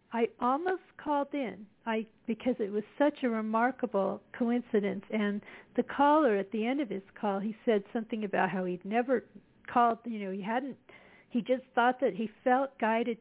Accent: American